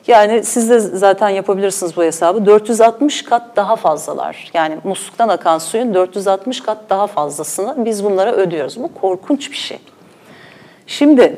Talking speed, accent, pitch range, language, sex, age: 140 wpm, native, 175-240 Hz, Turkish, female, 40-59